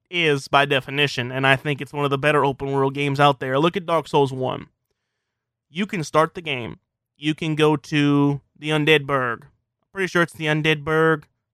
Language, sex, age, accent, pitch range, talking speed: English, male, 20-39, American, 135-155 Hz, 205 wpm